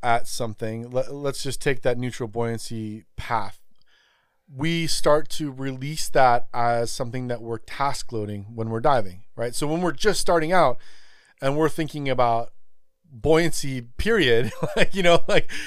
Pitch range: 120-145 Hz